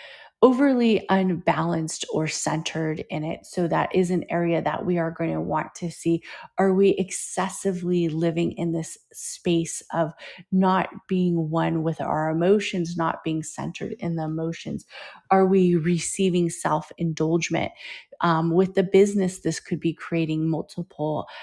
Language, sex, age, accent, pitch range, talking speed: English, female, 30-49, American, 165-195 Hz, 145 wpm